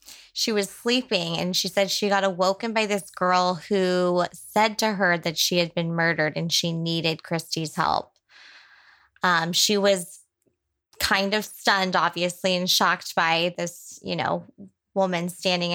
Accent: American